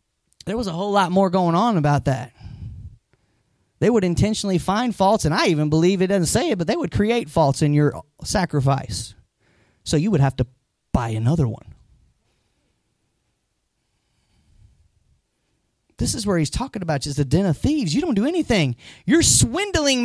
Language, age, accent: English, 30-49, American